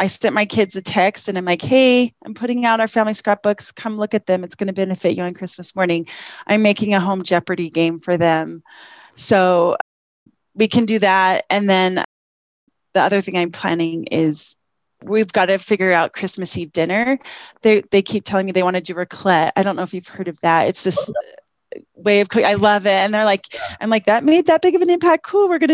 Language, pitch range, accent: English, 185-225 Hz, American